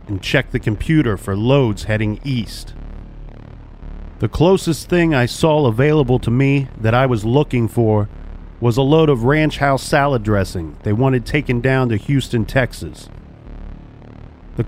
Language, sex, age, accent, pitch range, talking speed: English, male, 40-59, American, 110-145 Hz, 150 wpm